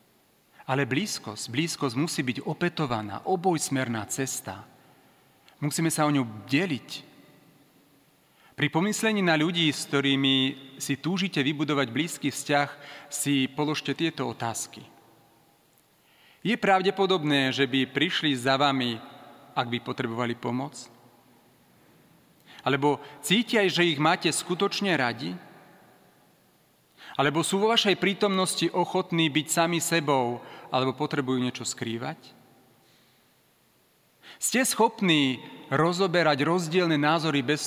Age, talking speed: 40-59, 105 wpm